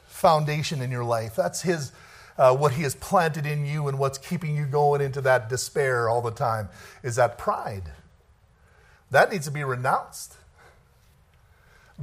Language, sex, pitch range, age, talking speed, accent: English, male, 130-185 Hz, 50-69, 165 wpm, American